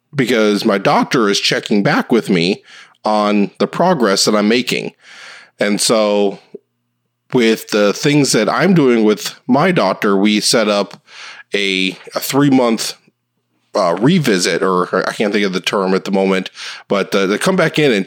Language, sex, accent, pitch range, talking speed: English, male, American, 95-115 Hz, 165 wpm